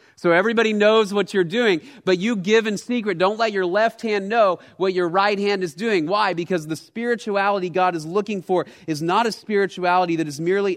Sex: male